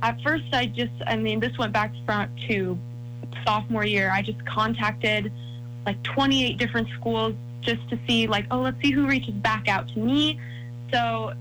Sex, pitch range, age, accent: female, 110-120 Hz, 20-39, American